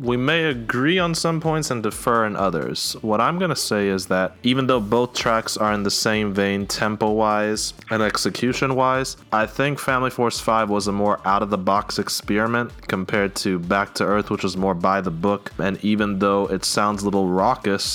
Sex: male